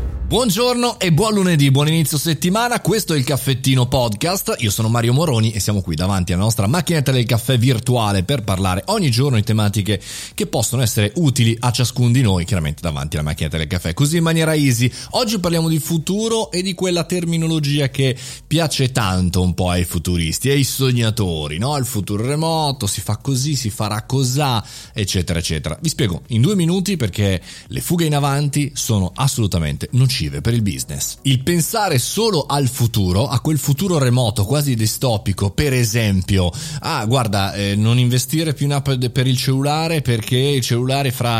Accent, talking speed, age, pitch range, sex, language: native, 180 wpm, 30-49, 115-145 Hz, male, Italian